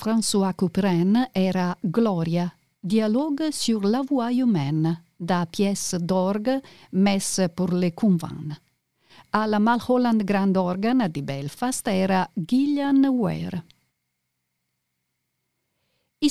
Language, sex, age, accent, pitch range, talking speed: Italian, female, 50-69, native, 175-245 Hz, 95 wpm